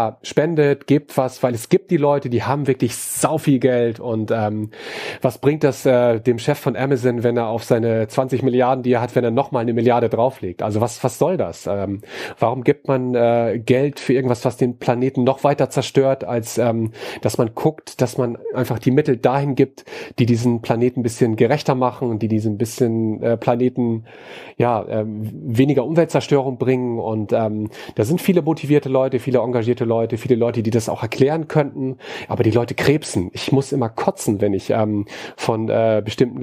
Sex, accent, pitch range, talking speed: male, German, 115-140 Hz, 195 wpm